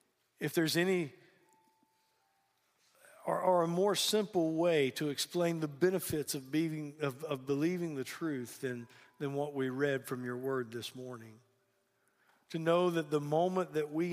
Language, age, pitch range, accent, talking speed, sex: English, 50-69, 130-165 Hz, American, 150 wpm, male